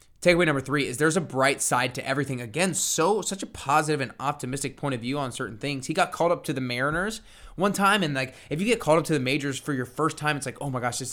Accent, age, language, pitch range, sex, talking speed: American, 20-39, English, 120-145 Hz, male, 280 wpm